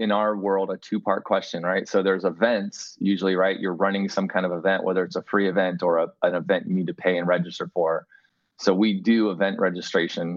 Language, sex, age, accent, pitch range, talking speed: English, male, 20-39, American, 90-105 Hz, 225 wpm